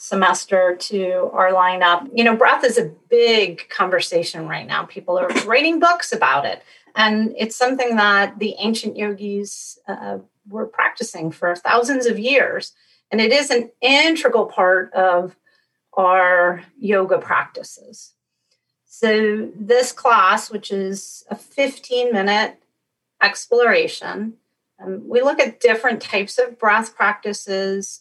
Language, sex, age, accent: English, female, 40-59, American